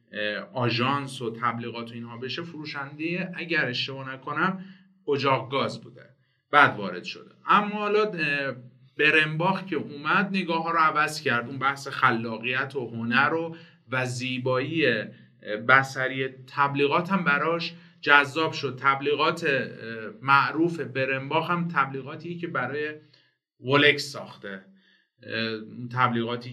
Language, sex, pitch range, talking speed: Persian, male, 120-165 Hz, 110 wpm